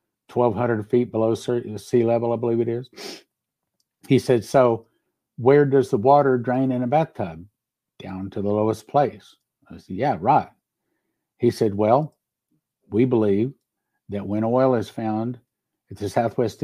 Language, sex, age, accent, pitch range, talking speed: English, male, 60-79, American, 110-130 Hz, 150 wpm